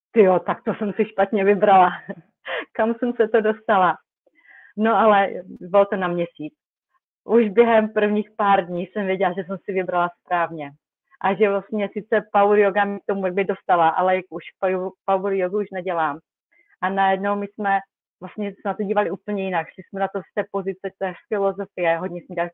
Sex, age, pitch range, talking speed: female, 30-49, 175-205 Hz, 185 wpm